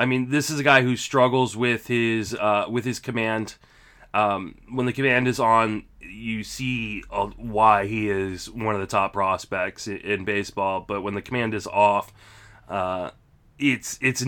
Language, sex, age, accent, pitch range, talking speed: English, male, 20-39, American, 105-130 Hz, 175 wpm